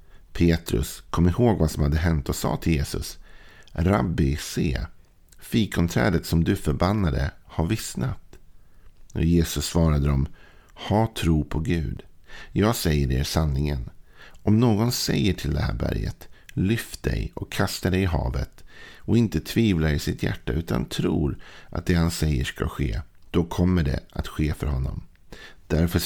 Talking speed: 155 wpm